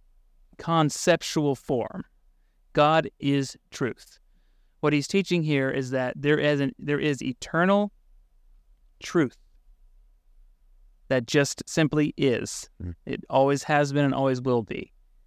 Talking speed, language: 120 wpm, English